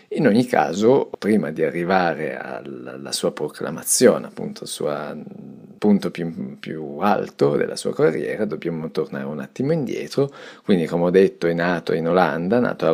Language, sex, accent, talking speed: Italian, male, native, 160 wpm